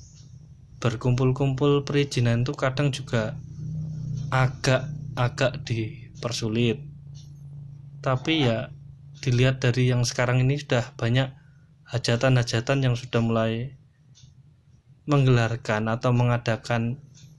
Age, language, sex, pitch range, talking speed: 20-39, Indonesian, male, 115-145 Hz, 80 wpm